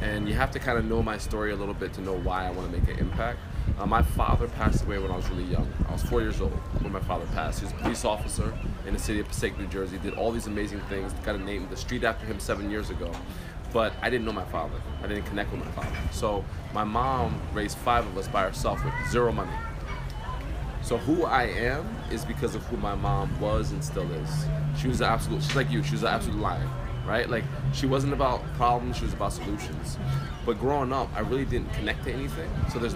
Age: 20-39